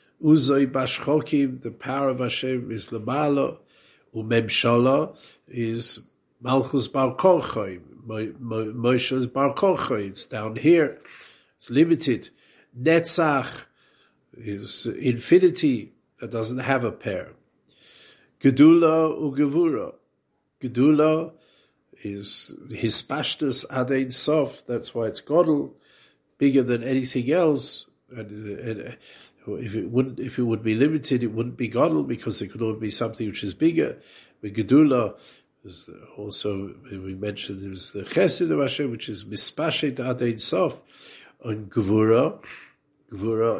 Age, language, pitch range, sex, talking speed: 50-69, English, 110-145 Hz, male, 120 wpm